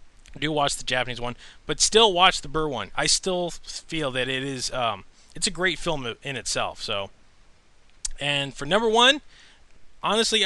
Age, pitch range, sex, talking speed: 20-39, 125-170 Hz, male, 170 wpm